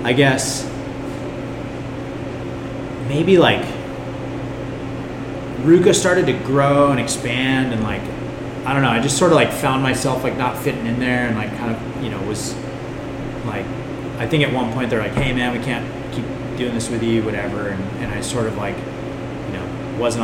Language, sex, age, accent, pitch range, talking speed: English, male, 30-49, American, 115-135 Hz, 180 wpm